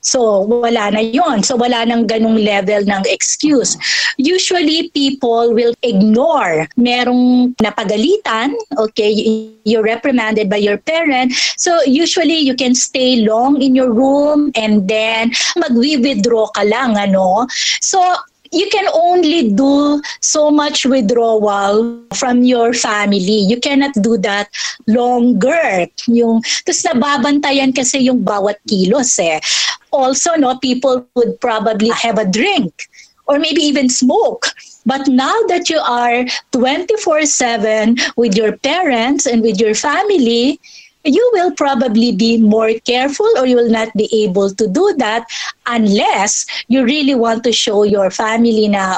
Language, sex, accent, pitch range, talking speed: English, female, Filipino, 215-275 Hz, 125 wpm